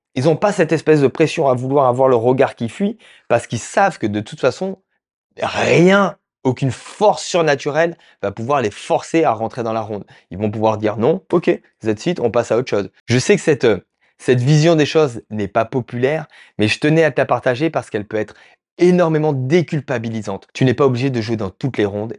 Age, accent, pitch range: 20-39, French, 110-155 Hz